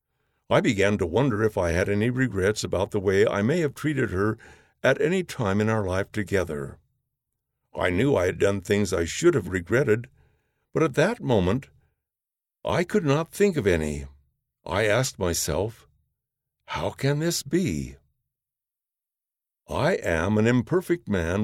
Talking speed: 155 wpm